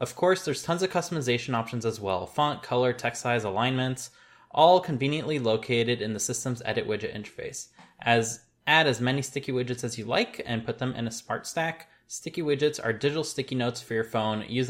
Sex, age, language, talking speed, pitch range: male, 20-39, English, 200 wpm, 120-155 Hz